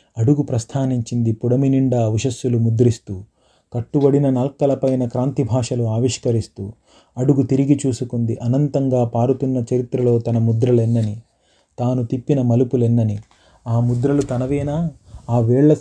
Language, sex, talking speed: Telugu, male, 105 wpm